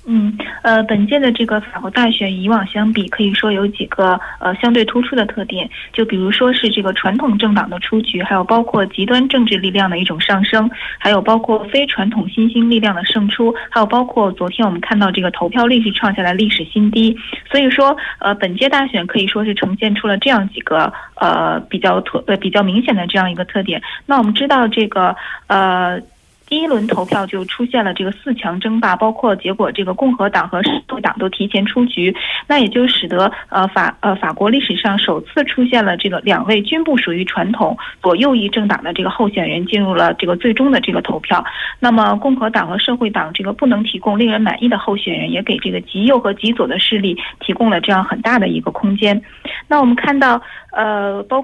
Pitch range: 195-235 Hz